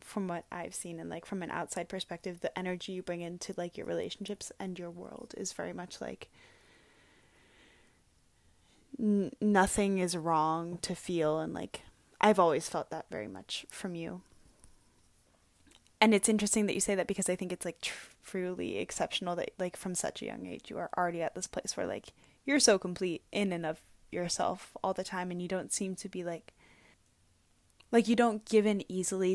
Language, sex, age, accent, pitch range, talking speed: English, female, 10-29, American, 170-200 Hz, 190 wpm